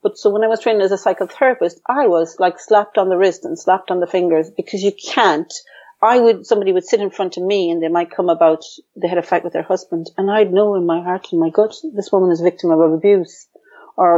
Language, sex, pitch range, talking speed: English, female, 170-210 Hz, 265 wpm